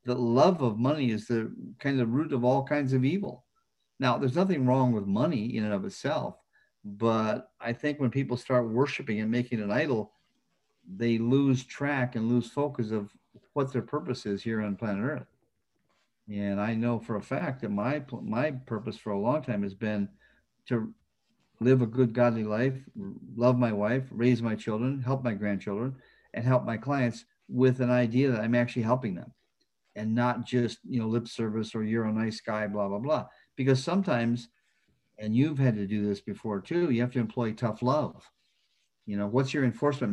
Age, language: 50-69, English